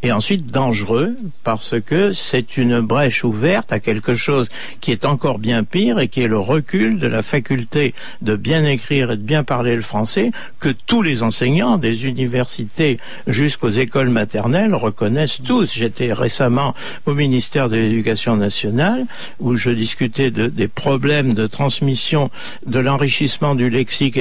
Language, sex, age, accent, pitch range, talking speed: French, male, 60-79, French, 120-160 Hz, 155 wpm